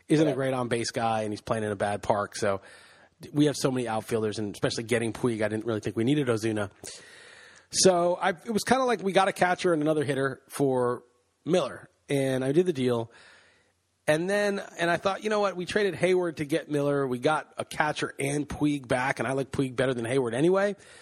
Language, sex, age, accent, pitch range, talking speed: English, male, 30-49, American, 120-165 Hz, 225 wpm